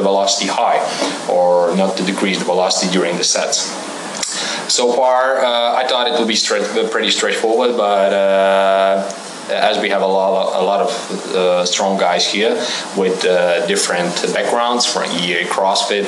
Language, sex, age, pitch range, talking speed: English, male, 20-39, 95-110 Hz, 155 wpm